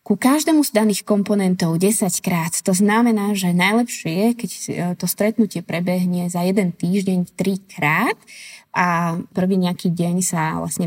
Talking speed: 145 wpm